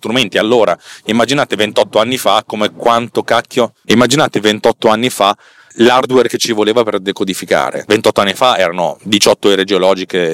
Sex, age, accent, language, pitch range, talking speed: male, 30-49, native, Italian, 95-120 Hz, 145 wpm